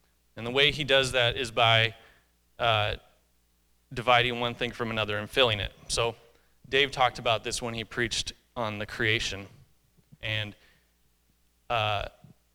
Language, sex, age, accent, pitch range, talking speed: English, male, 30-49, American, 100-130 Hz, 145 wpm